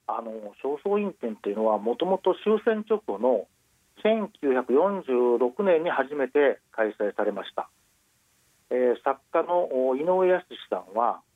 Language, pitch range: Japanese, 125-180 Hz